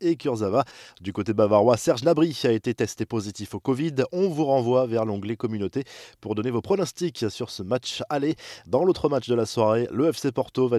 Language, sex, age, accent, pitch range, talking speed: French, male, 20-39, French, 110-140 Hz, 205 wpm